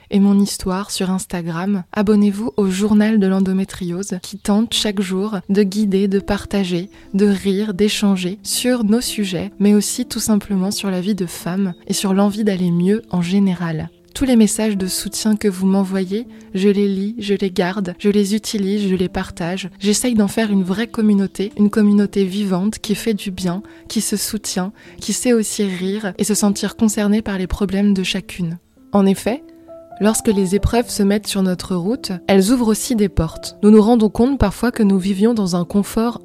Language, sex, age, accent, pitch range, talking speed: French, female, 20-39, French, 190-215 Hz, 190 wpm